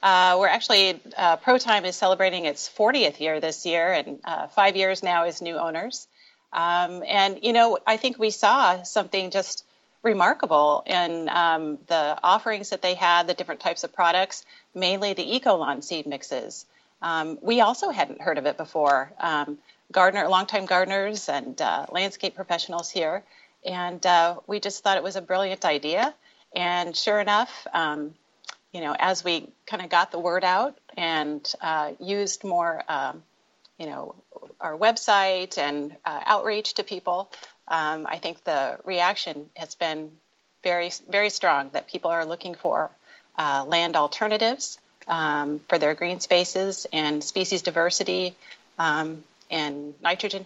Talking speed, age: 155 wpm, 40-59